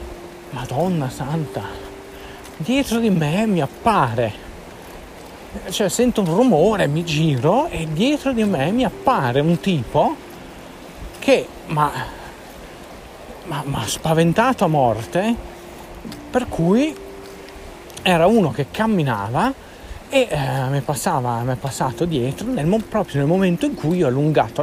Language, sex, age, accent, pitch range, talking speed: Italian, male, 40-59, native, 135-225 Hz, 120 wpm